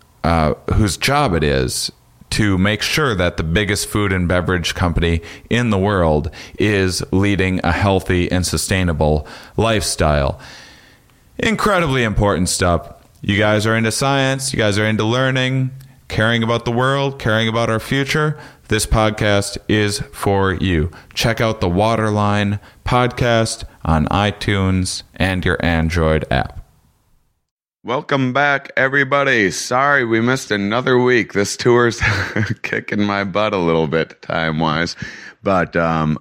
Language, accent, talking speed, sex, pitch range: English, American, 135 wpm, male, 85-110 Hz